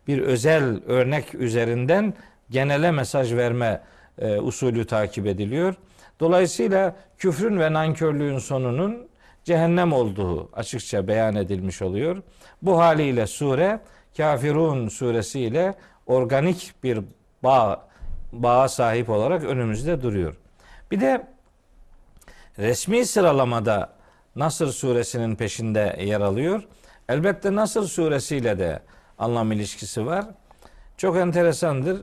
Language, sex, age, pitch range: Turkish, male, 50-69, 115-175 Hz